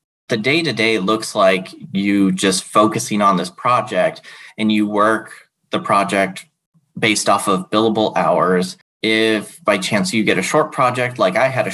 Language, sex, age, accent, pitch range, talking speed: English, male, 30-49, American, 95-115 Hz, 165 wpm